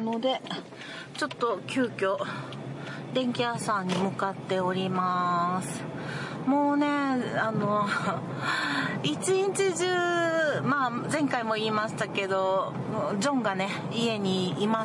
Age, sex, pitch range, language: 40-59, female, 185-255 Hz, Japanese